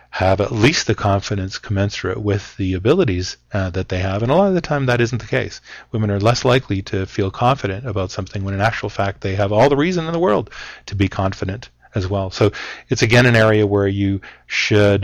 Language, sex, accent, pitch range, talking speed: English, male, American, 95-125 Hz, 230 wpm